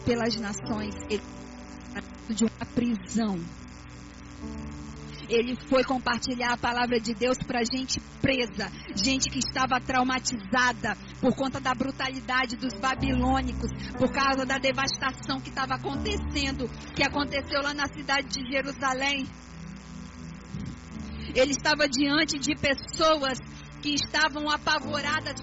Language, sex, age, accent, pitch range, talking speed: Portuguese, female, 50-69, Brazilian, 225-285 Hz, 115 wpm